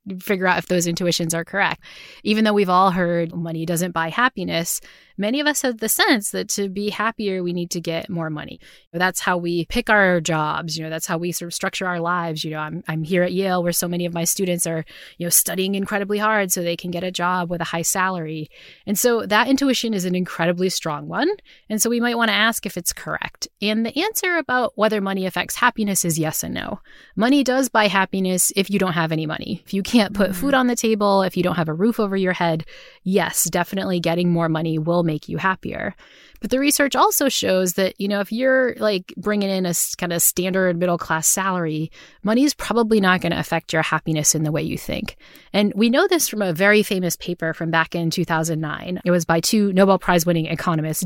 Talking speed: 235 wpm